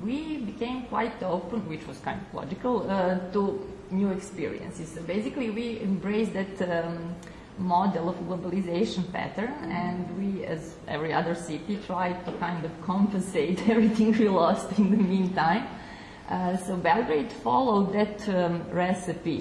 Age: 20-39